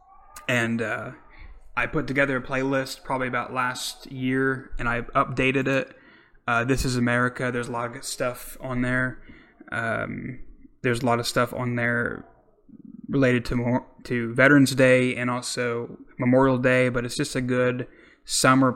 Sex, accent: male, American